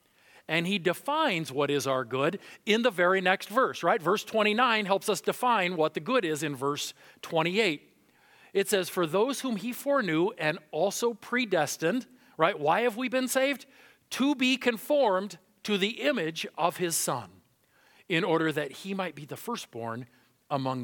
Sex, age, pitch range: male, 40-59, 145-220 Hz